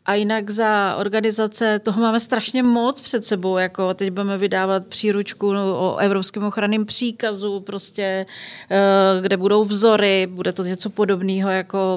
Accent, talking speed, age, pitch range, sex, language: native, 140 wpm, 40-59, 180-210 Hz, female, Czech